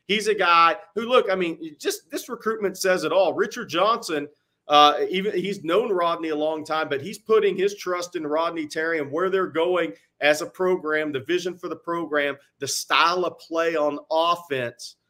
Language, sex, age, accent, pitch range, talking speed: English, male, 40-59, American, 145-185 Hz, 195 wpm